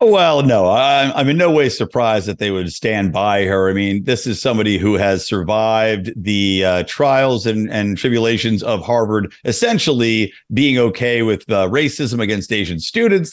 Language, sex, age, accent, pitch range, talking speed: English, male, 50-69, American, 100-125 Hz, 170 wpm